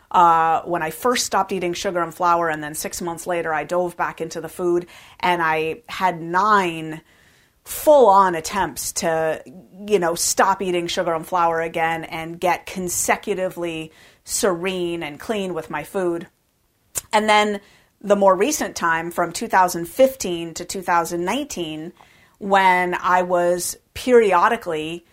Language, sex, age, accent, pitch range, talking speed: English, female, 30-49, American, 165-195 Hz, 140 wpm